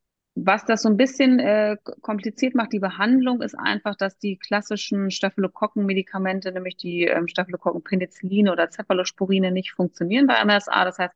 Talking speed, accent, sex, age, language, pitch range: 150 wpm, German, female, 30-49, German, 175-205 Hz